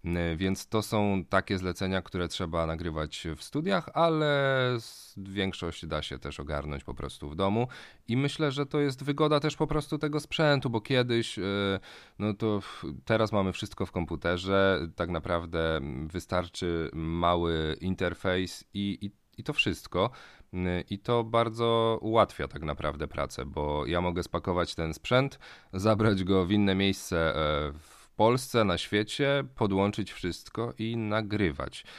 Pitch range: 85-110 Hz